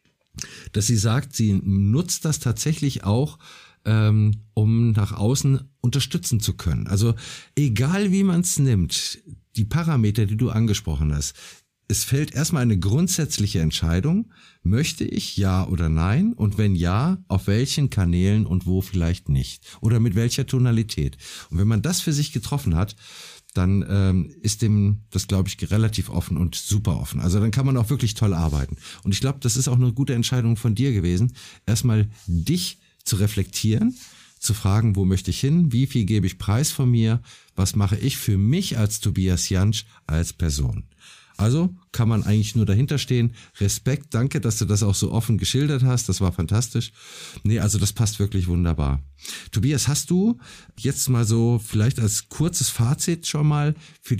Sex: male